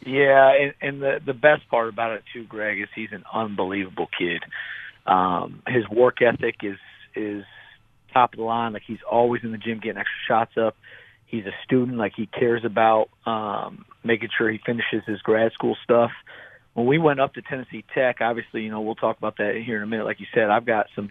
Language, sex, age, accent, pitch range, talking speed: English, male, 40-59, American, 110-130 Hz, 215 wpm